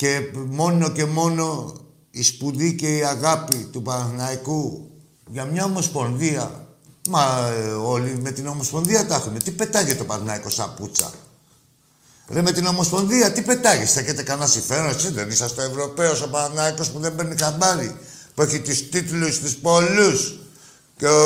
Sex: male